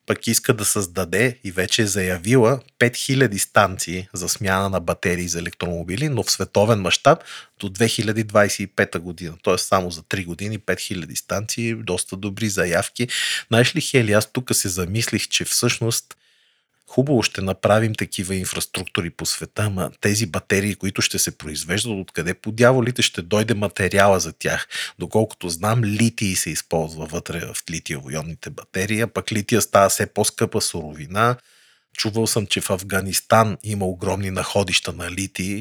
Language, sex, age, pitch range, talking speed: Bulgarian, male, 30-49, 95-115 Hz, 150 wpm